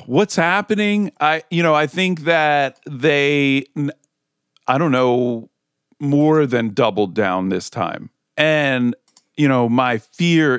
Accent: American